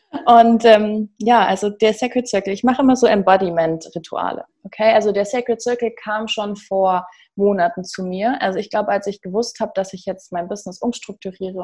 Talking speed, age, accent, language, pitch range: 185 wpm, 20-39, German, German, 185-220 Hz